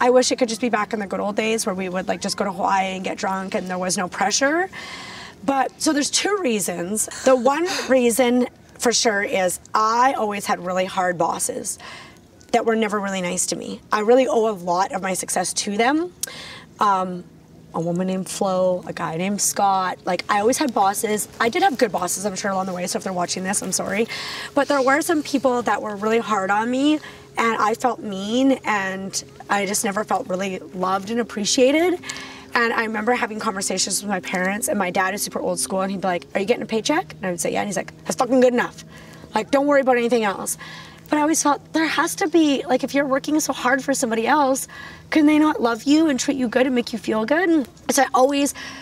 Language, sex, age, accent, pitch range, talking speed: English, female, 20-39, American, 195-265 Hz, 240 wpm